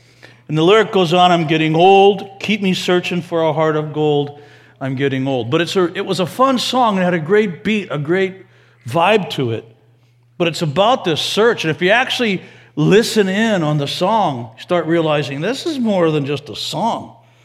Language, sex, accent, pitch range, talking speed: English, male, American, 120-185 Hz, 210 wpm